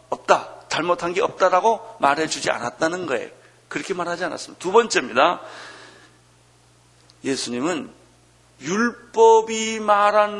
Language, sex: Korean, male